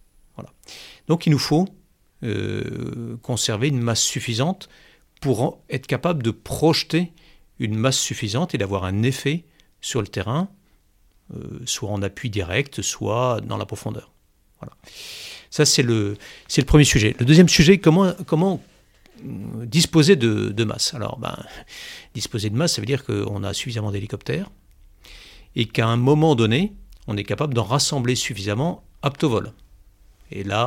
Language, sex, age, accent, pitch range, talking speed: French, male, 50-69, French, 105-145 Hz, 155 wpm